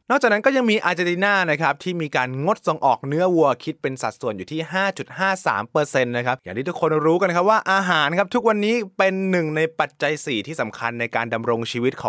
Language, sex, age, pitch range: Thai, male, 20-39, 130-195 Hz